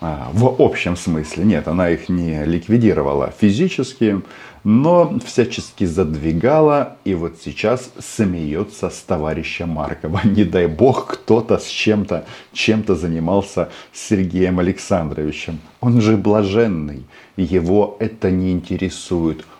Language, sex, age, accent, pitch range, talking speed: Russian, male, 40-59, native, 80-105 Hz, 105 wpm